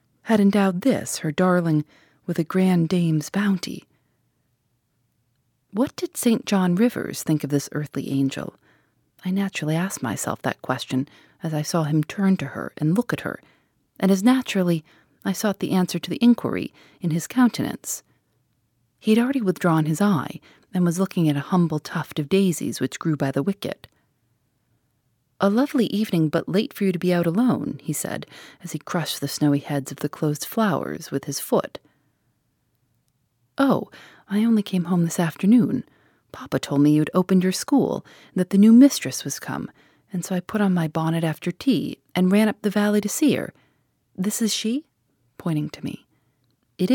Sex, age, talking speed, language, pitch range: female, 30-49, 180 wpm, English, 145-200 Hz